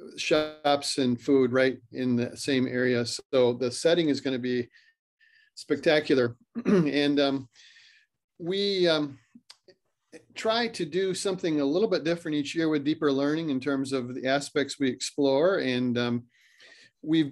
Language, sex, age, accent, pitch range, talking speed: English, male, 40-59, American, 130-165 Hz, 150 wpm